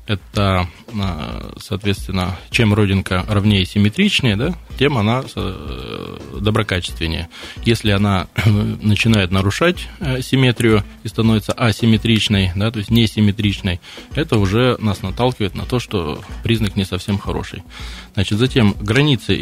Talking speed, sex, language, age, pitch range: 115 wpm, male, Russian, 20-39, 95-115 Hz